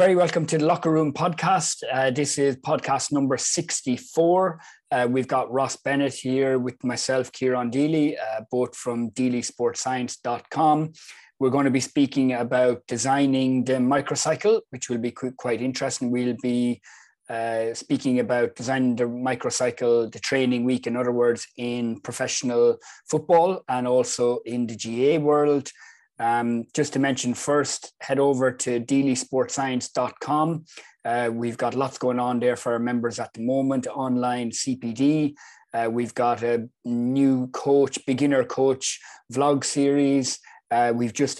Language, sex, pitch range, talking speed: English, male, 120-140 Hz, 145 wpm